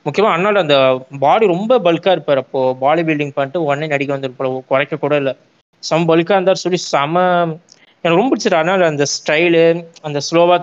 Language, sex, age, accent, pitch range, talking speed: Tamil, male, 20-39, native, 145-190 Hz, 175 wpm